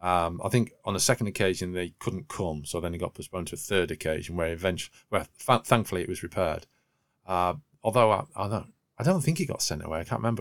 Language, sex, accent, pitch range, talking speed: English, male, British, 90-120 Hz, 235 wpm